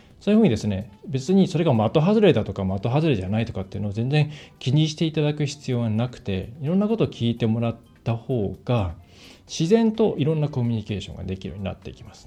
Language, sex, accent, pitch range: Japanese, male, native, 105-150 Hz